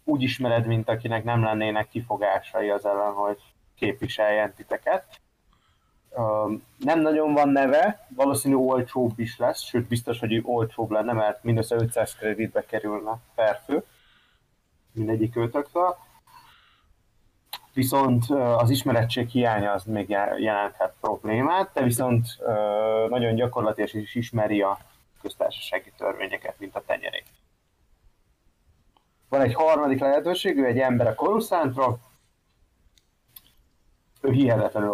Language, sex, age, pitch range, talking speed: Hungarian, male, 30-49, 105-130 Hz, 110 wpm